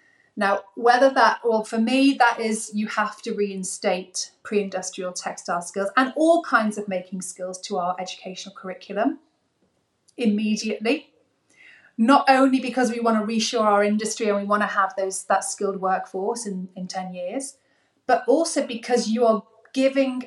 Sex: female